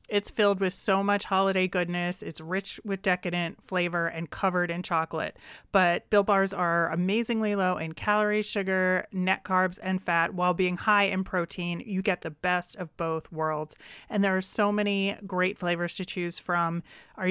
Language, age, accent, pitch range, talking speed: English, 30-49, American, 175-205 Hz, 180 wpm